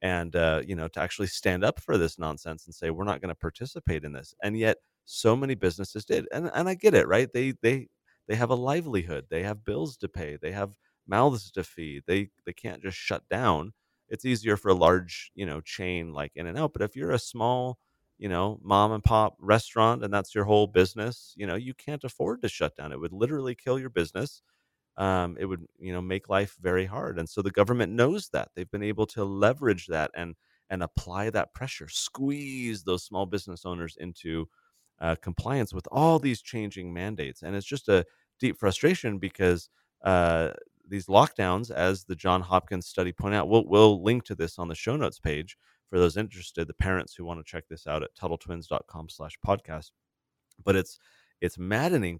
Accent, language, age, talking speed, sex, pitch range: American, English, 30-49, 210 wpm, male, 85-110 Hz